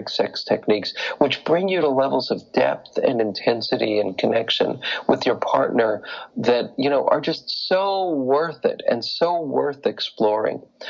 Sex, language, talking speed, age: male, English, 155 wpm, 40-59